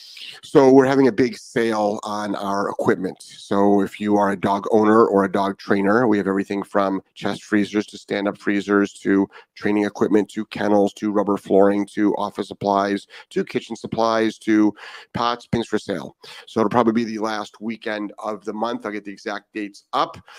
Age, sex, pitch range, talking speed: 30-49, male, 105-110 Hz, 190 wpm